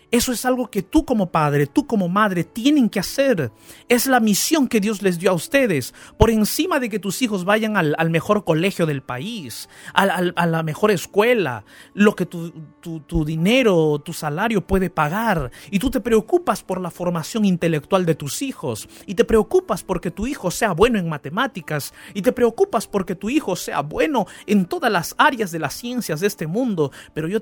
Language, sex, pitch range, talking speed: Spanish, male, 160-220 Hz, 200 wpm